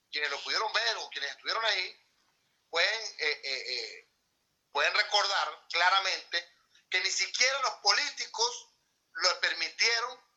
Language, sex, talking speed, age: Spanish, male, 125 wpm, 30-49